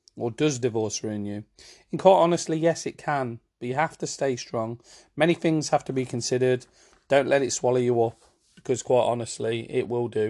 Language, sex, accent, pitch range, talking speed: English, male, British, 115-130 Hz, 205 wpm